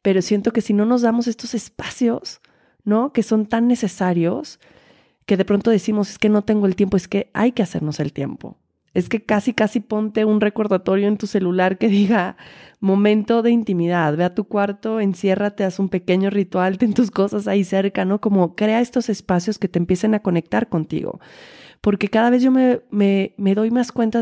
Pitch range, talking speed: 185-225 Hz, 200 wpm